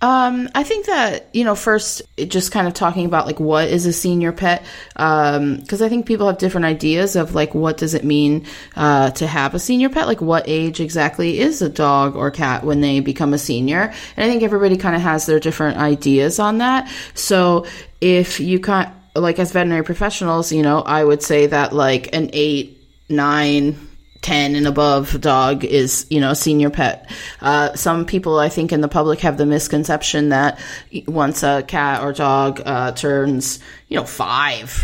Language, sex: English, female